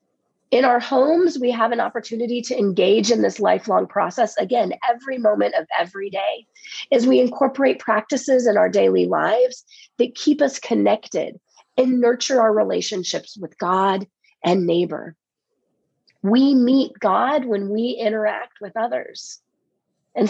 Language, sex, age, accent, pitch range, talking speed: English, female, 30-49, American, 200-260 Hz, 140 wpm